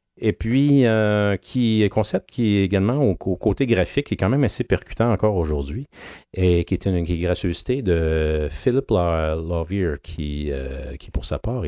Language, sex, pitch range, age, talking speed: English, male, 75-105 Hz, 40-59, 195 wpm